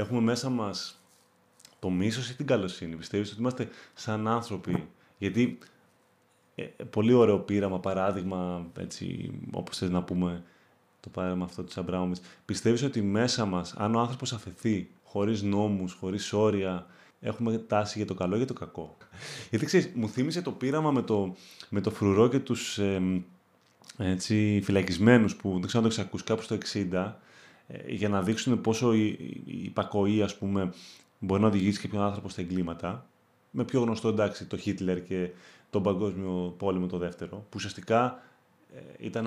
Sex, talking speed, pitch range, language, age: male, 160 wpm, 95-115 Hz, Greek, 20-39